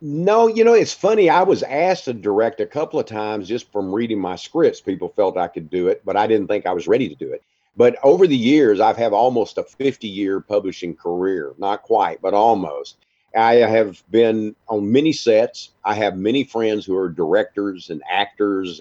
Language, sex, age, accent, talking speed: English, male, 50-69, American, 210 wpm